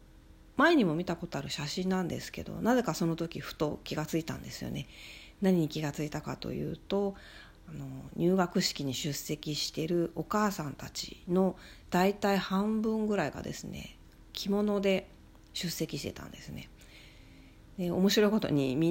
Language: Japanese